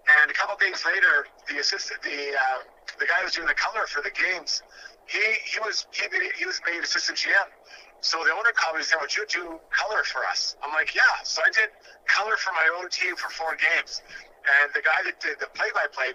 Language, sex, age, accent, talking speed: English, male, 40-59, American, 240 wpm